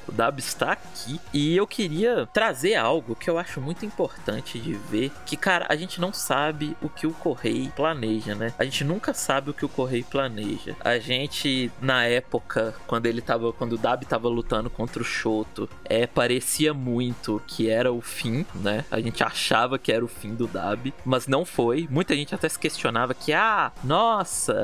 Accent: Brazilian